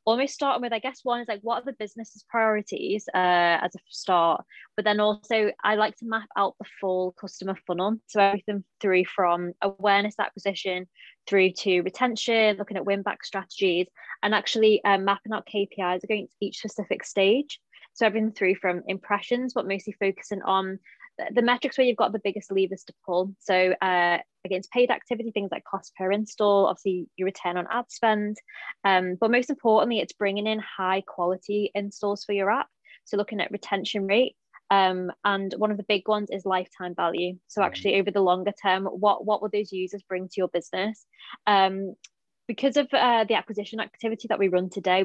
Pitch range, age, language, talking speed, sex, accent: 190-215 Hz, 20-39, English, 190 wpm, female, British